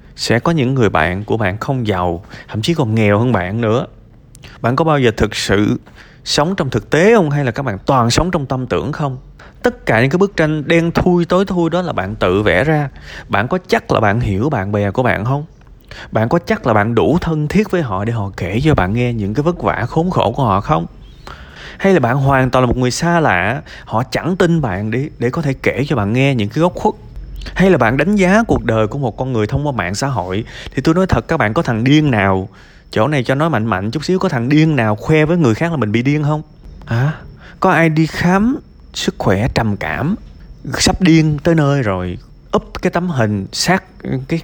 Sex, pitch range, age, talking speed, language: male, 110-165 Hz, 20-39, 245 wpm, Vietnamese